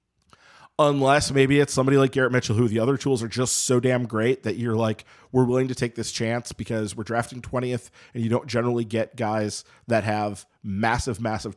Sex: male